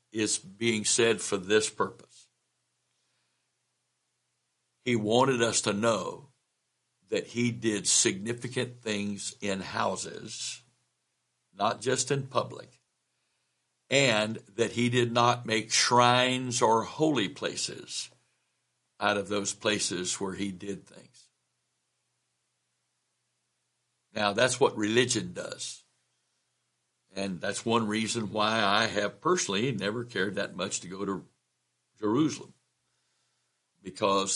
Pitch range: 105-125 Hz